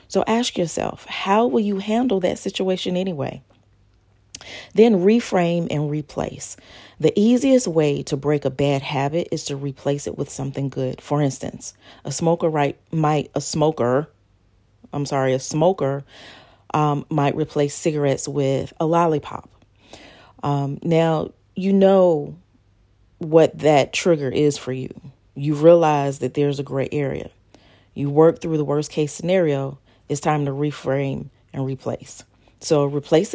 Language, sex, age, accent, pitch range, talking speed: English, female, 40-59, American, 130-160 Hz, 140 wpm